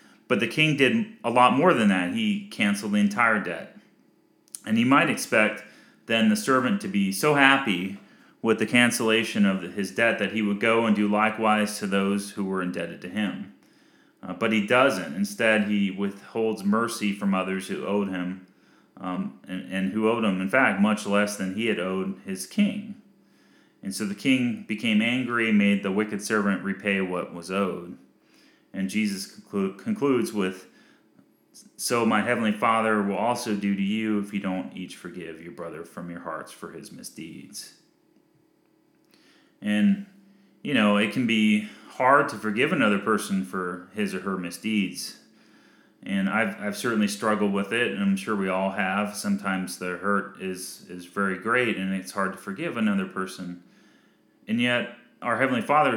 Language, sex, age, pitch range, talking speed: English, male, 30-49, 100-140 Hz, 175 wpm